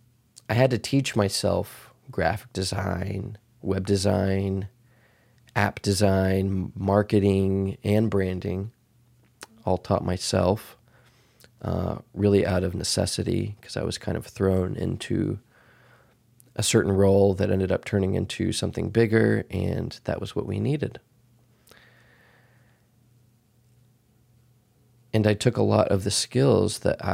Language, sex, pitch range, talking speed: English, male, 100-120 Hz, 120 wpm